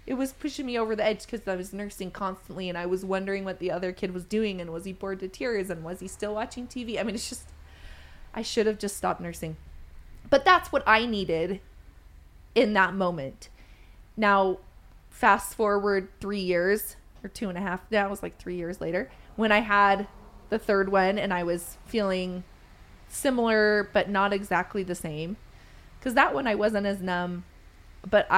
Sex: female